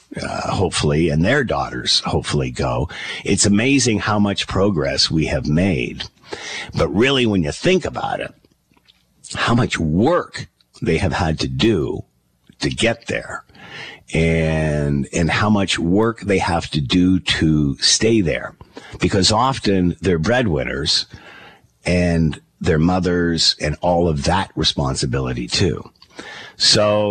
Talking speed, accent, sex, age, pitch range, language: 130 wpm, American, male, 50-69, 80-105 Hz, English